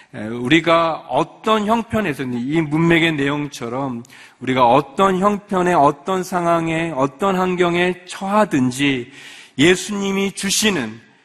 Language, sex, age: Korean, male, 40-59